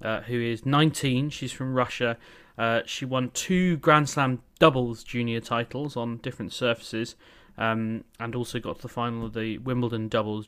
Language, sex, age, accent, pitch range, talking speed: English, male, 30-49, British, 110-140 Hz, 170 wpm